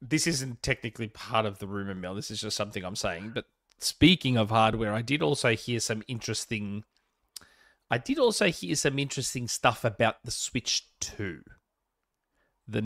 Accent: Australian